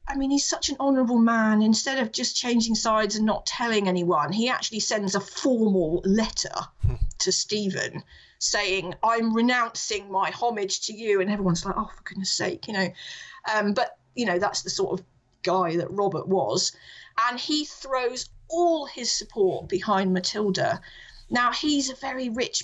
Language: English